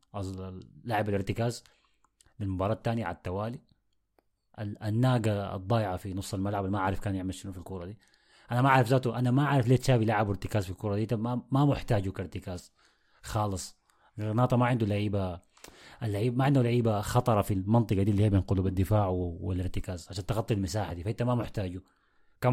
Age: 30-49